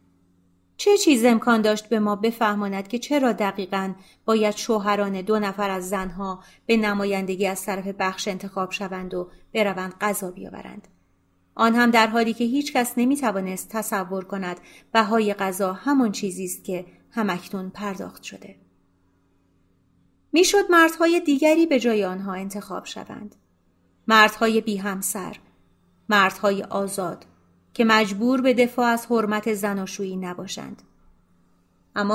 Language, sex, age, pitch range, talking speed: Persian, female, 30-49, 185-230 Hz, 130 wpm